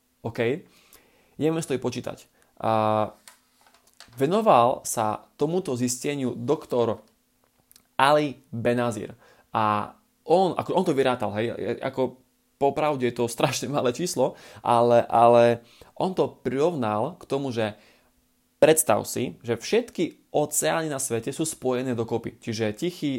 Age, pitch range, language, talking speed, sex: 20-39, 120-150 Hz, Slovak, 115 wpm, male